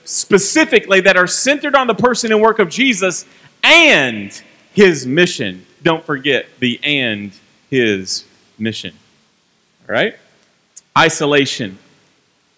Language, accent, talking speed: English, American, 110 wpm